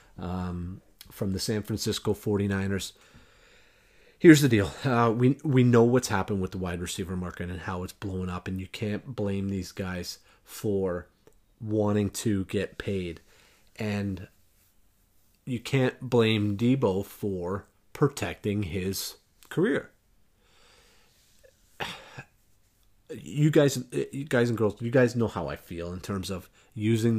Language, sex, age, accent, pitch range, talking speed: English, male, 40-59, American, 95-110 Hz, 135 wpm